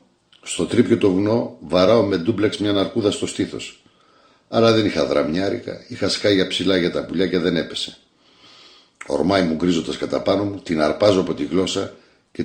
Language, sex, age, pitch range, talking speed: Greek, male, 60-79, 85-100 Hz, 175 wpm